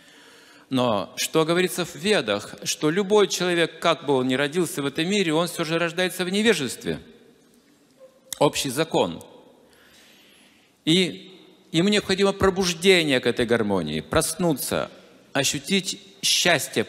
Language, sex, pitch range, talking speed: Russian, male, 135-185 Hz, 120 wpm